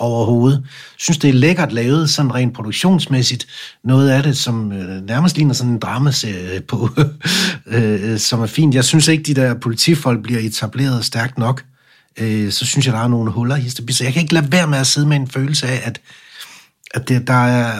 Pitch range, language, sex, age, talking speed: 115-145 Hz, English, male, 60-79, 210 wpm